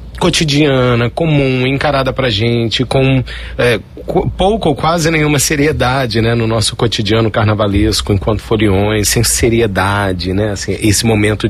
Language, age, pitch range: Portuguese, 40-59, 100-130 Hz